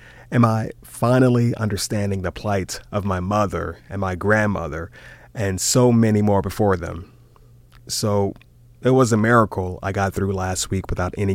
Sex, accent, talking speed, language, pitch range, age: male, American, 160 wpm, English, 95-120 Hz, 30-49